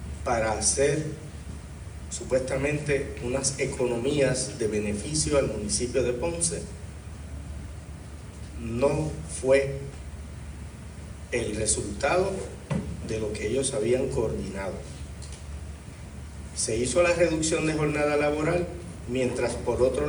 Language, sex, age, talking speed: Spanish, male, 40-59, 95 wpm